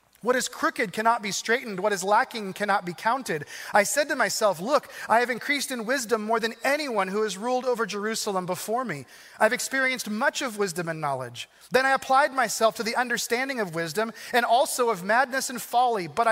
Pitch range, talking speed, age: 200-260 Hz, 200 wpm, 30-49